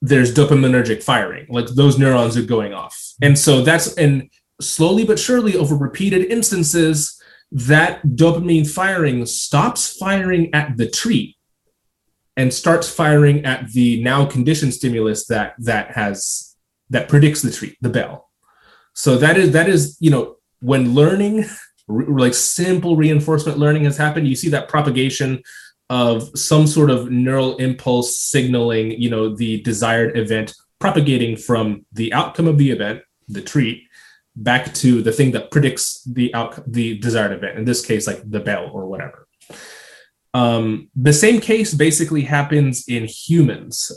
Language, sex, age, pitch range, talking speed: English, male, 20-39, 120-150 Hz, 150 wpm